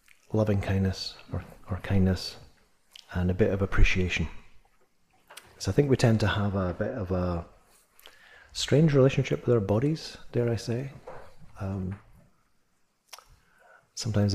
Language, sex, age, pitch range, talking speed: English, male, 30-49, 85-105 Hz, 130 wpm